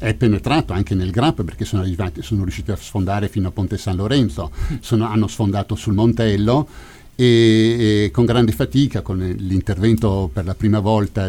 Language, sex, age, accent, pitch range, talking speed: Italian, male, 50-69, native, 95-115 Hz, 175 wpm